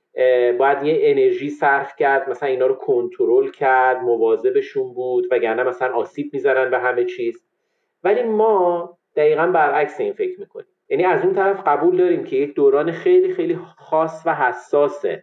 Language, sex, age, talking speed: Persian, male, 40-59, 160 wpm